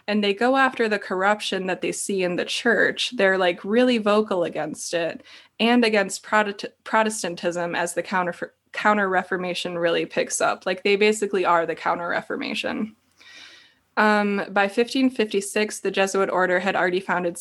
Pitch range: 180-215 Hz